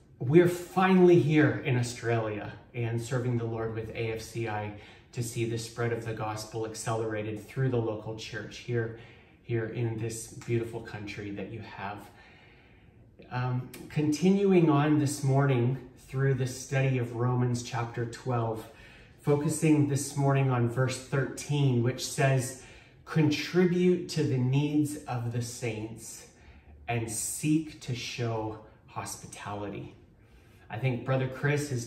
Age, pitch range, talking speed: 30-49, 115-145 Hz, 130 wpm